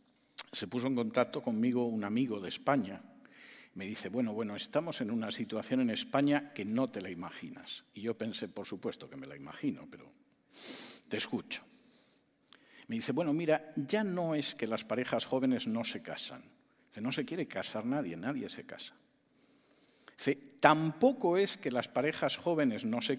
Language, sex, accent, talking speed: English, male, Spanish, 170 wpm